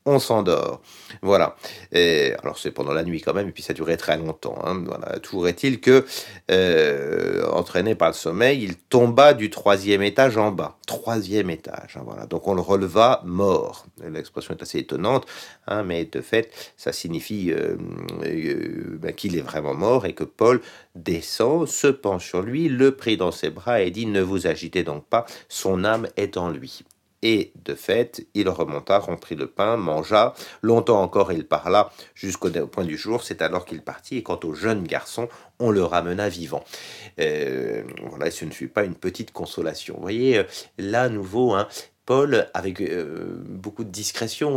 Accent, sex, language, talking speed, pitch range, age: French, male, French, 185 wpm, 95-130 Hz, 50-69